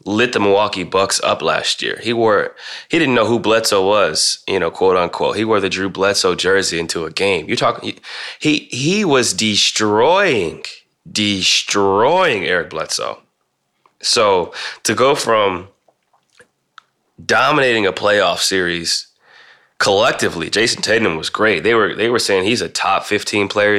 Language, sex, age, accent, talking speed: English, male, 20-39, American, 150 wpm